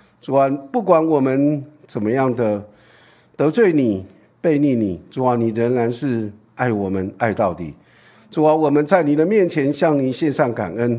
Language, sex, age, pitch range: Chinese, male, 50-69, 120-155 Hz